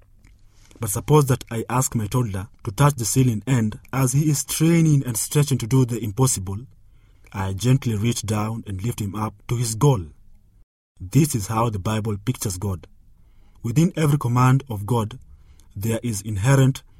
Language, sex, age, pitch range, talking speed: English, male, 40-59, 100-130 Hz, 170 wpm